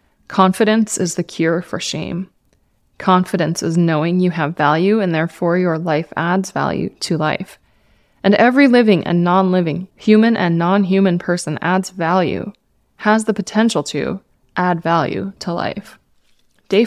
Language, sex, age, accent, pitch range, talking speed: English, female, 20-39, American, 165-205 Hz, 140 wpm